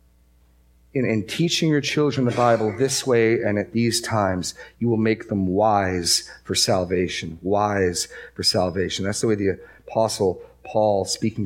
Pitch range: 90-120 Hz